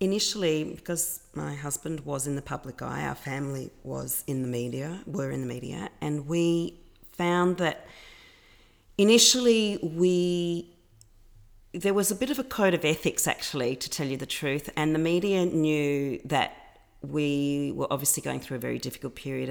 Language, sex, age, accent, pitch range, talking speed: English, female, 40-59, Australian, 135-175 Hz, 165 wpm